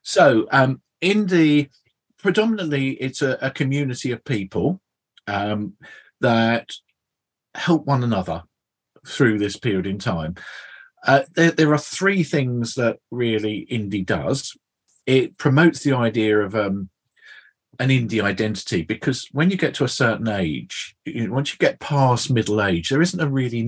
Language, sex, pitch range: English, male, 110-145 Hz